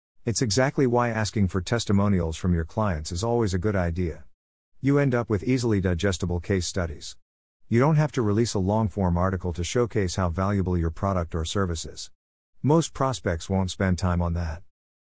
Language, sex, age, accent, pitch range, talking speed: English, male, 50-69, American, 85-115 Hz, 185 wpm